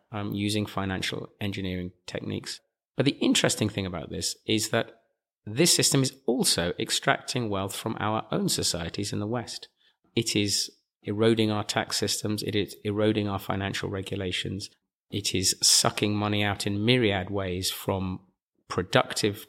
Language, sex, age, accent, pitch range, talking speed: English, male, 30-49, British, 95-120 Hz, 150 wpm